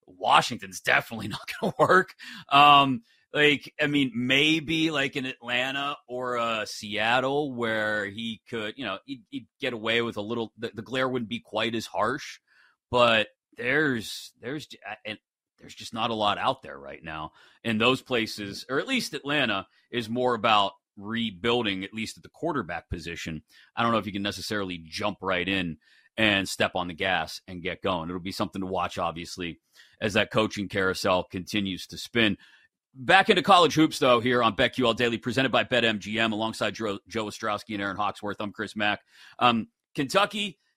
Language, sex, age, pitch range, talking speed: English, male, 30-49, 105-140 Hz, 180 wpm